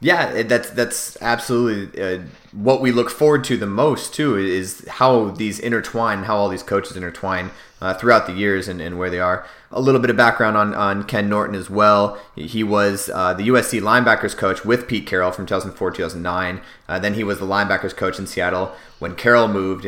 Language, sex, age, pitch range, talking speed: English, male, 30-49, 95-115 Hz, 205 wpm